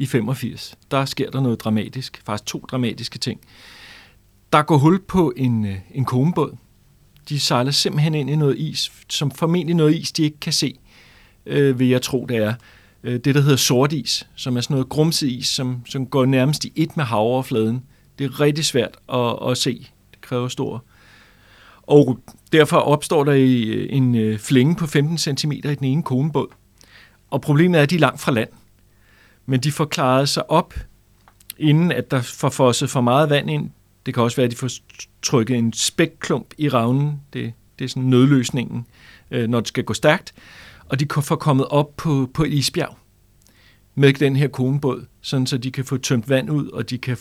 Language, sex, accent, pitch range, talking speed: Danish, male, native, 115-145 Hz, 185 wpm